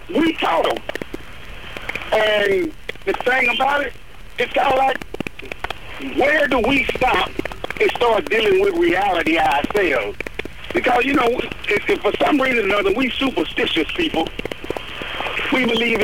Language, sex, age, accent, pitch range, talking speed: English, male, 60-79, American, 205-320 Hz, 125 wpm